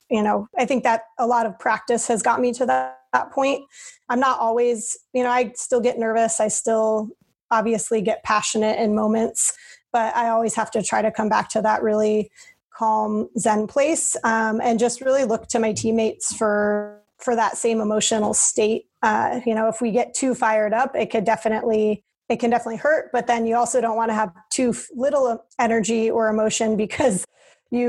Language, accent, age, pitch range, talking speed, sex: English, American, 30-49, 215-240 Hz, 200 wpm, female